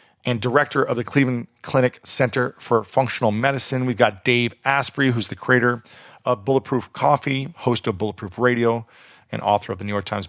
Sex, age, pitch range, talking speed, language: male, 40-59, 115-135 Hz, 180 wpm, English